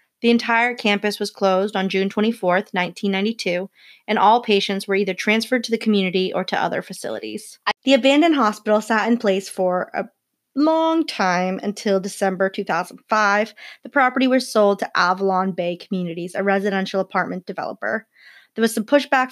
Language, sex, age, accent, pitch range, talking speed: English, female, 20-39, American, 190-215 Hz, 160 wpm